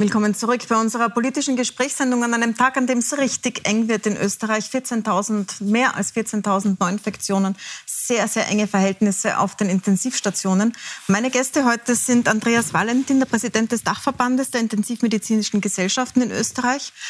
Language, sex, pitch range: German, female, 205-245 Hz